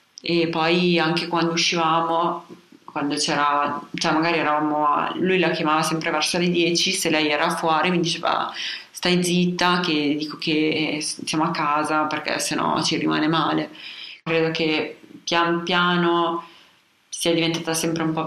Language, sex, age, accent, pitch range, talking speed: Italian, female, 30-49, native, 155-170 Hz, 155 wpm